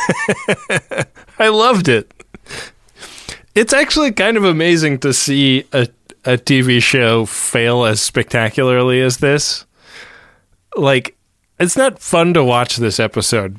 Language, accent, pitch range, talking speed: English, American, 115-145 Hz, 120 wpm